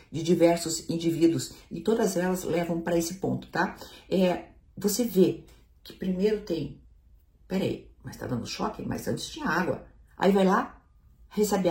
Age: 50-69